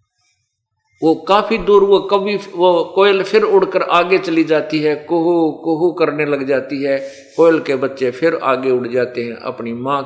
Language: Hindi